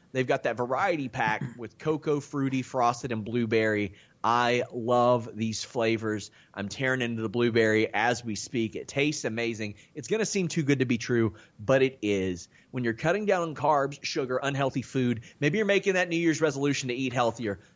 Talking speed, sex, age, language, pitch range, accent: 195 wpm, male, 30-49, English, 115-145 Hz, American